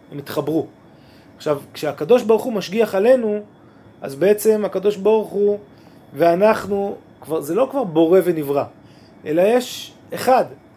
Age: 30-49